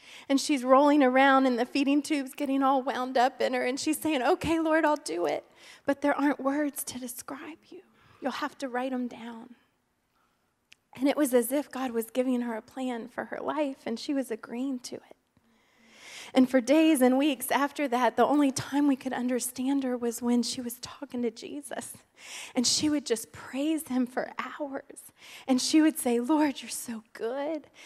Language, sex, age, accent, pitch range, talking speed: English, female, 20-39, American, 240-285 Hz, 200 wpm